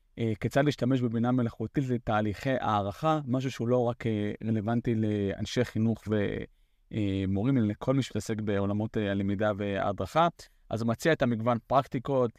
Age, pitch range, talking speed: 30-49, 110-135 Hz, 130 wpm